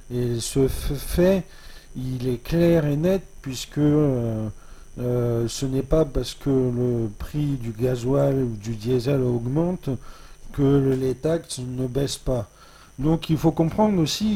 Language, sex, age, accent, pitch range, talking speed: French, male, 40-59, French, 125-150 Hz, 150 wpm